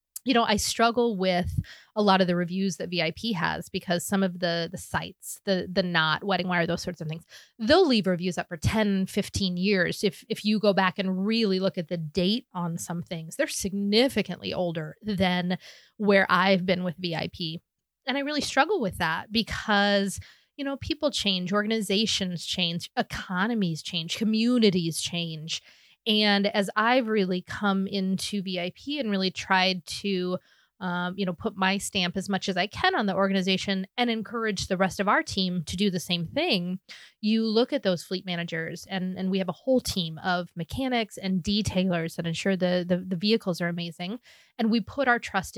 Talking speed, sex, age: 190 wpm, female, 20-39